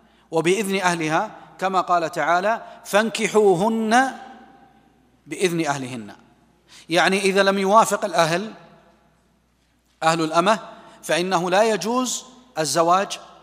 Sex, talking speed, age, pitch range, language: male, 85 wpm, 40-59, 160-205 Hz, Arabic